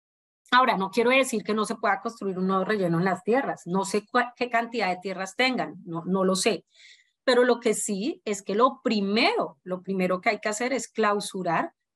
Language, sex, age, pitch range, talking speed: Spanish, female, 30-49, 185-230 Hz, 215 wpm